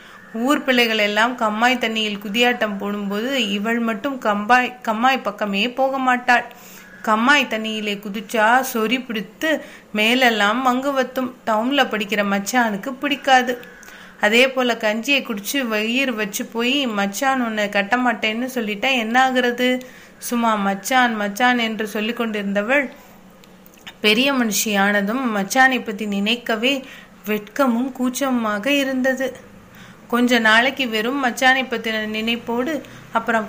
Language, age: Tamil, 30-49